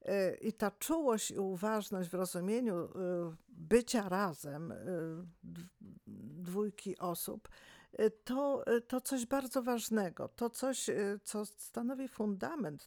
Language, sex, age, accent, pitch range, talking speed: Polish, female, 50-69, native, 185-235 Hz, 100 wpm